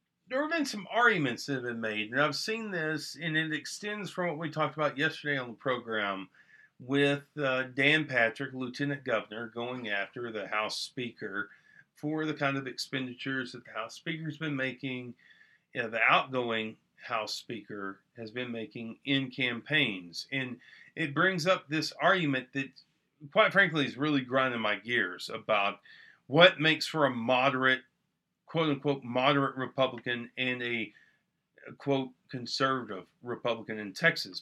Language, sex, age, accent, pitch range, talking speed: English, male, 40-59, American, 125-170 Hz, 150 wpm